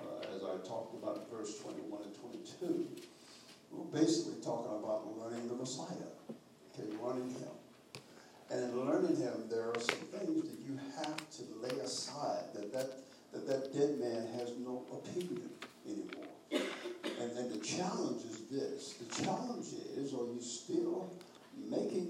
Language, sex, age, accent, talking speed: English, male, 60-79, American, 150 wpm